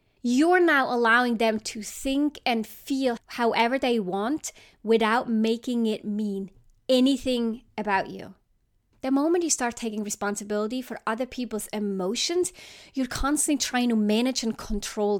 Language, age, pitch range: English, 30-49, 210-260 Hz